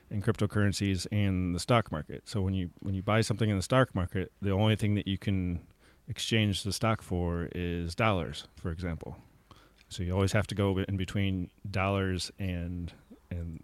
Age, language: 30-49, English